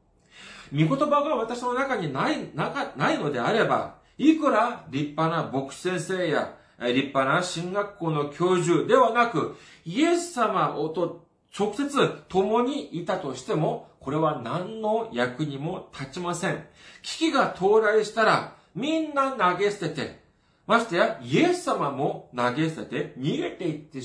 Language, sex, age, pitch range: Japanese, male, 40-59, 130-190 Hz